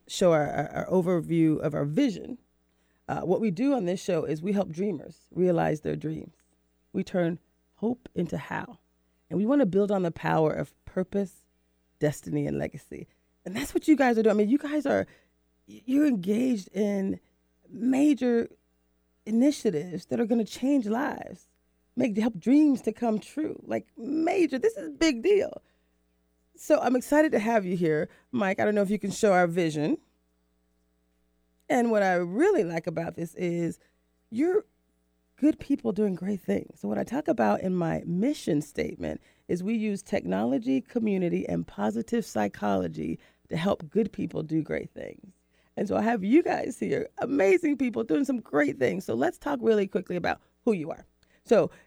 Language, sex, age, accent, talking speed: English, female, 30-49, American, 175 wpm